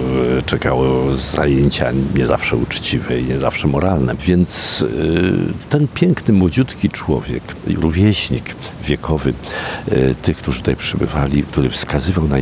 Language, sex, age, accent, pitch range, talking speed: Polish, male, 50-69, native, 65-85 Hz, 110 wpm